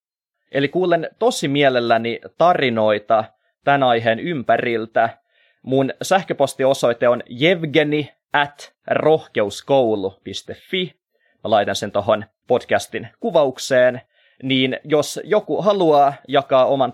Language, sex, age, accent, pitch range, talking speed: Finnish, male, 20-39, native, 120-155 Hz, 90 wpm